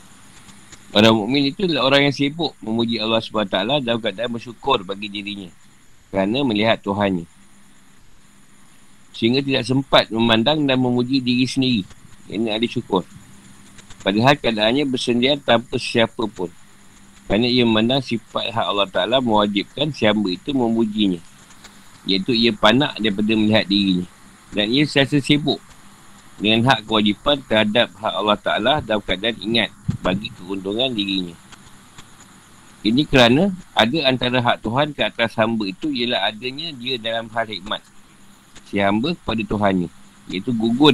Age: 50-69